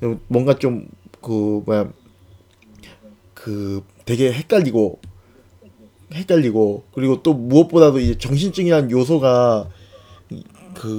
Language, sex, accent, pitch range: Korean, male, native, 105-160 Hz